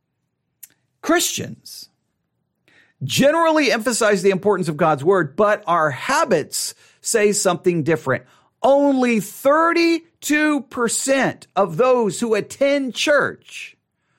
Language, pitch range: English, 185-260 Hz